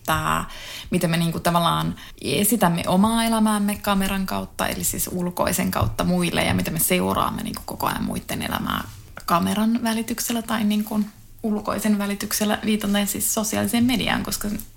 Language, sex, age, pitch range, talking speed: Finnish, female, 20-39, 170-215 Hz, 140 wpm